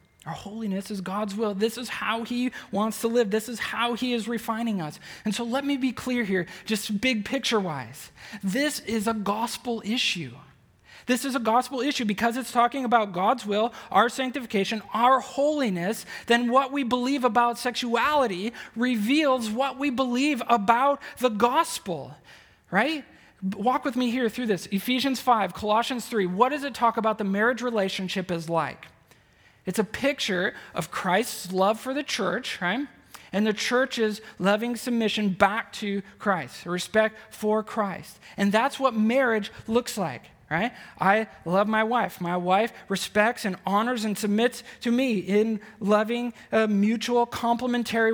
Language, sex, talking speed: English, male, 160 wpm